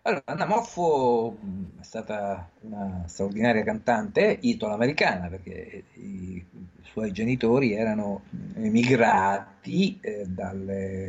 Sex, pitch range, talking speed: male, 95-150 Hz, 105 wpm